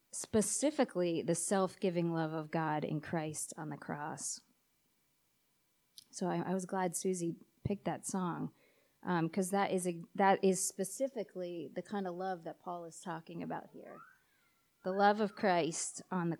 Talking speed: 155 wpm